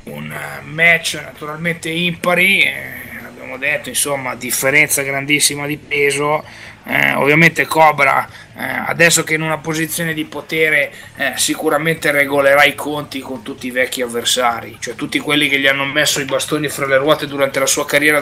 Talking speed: 165 wpm